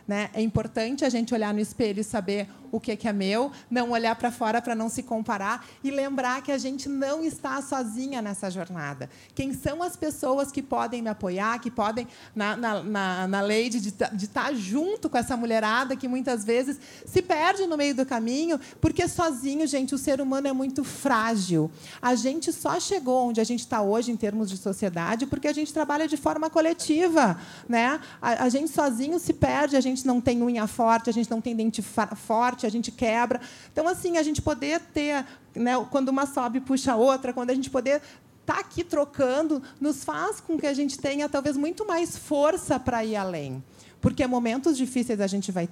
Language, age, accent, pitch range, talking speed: Portuguese, 30-49, Brazilian, 225-285 Hz, 195 wpm